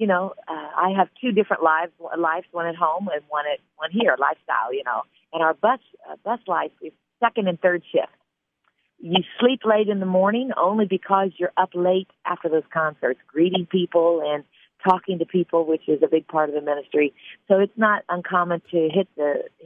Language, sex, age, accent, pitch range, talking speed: English, female, 40-59, American, 160-190 Hz, 195 wpm